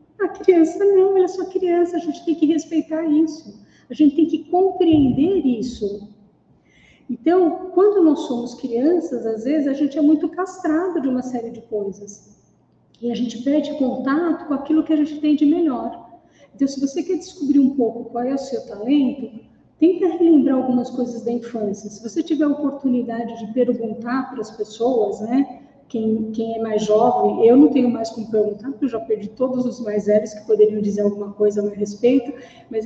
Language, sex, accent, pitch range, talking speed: Portuguese, female, Brazilian, 225-305 Hz, 195 wpm